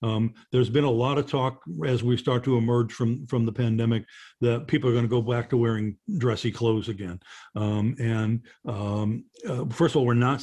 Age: 50-69